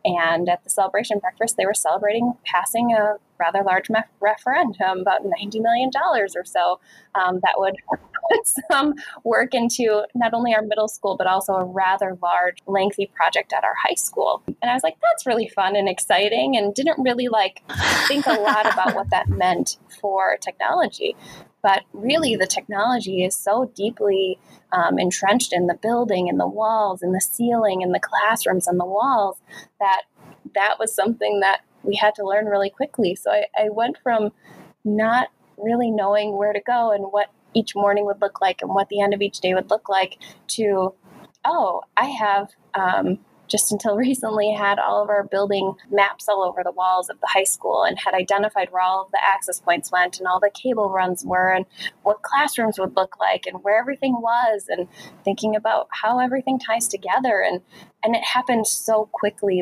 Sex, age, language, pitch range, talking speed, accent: female, 10-29, English, 190-225 Hz, 190 wpm, American